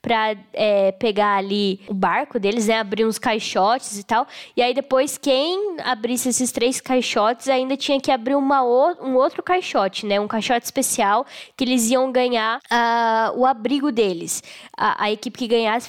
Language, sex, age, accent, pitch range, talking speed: Portuguese, female, 10-29, Brazilian, 225-275 Hz, 180 wpm